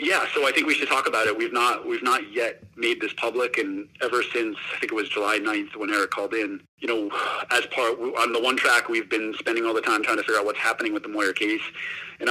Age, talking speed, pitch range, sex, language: 30-49, 270 wpm, 275-405 Hz, male, English